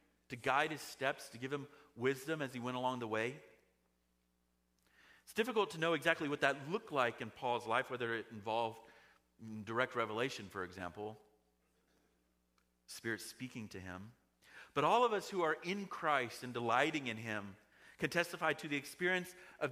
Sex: male